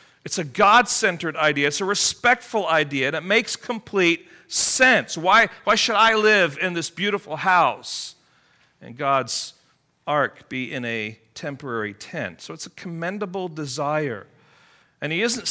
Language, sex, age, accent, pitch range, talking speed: English, male, 40-59, American, 125-185 Hz, 150 wpm